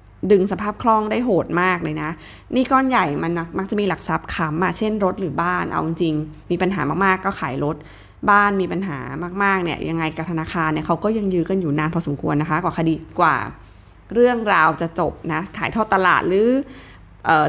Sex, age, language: female, 20-39, Thai